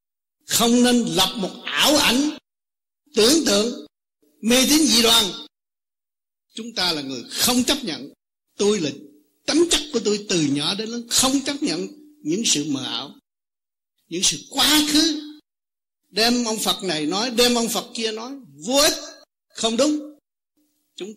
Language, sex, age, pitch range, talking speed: Vietnamese, male, 60-79, 180-275 Hz, 155 wpm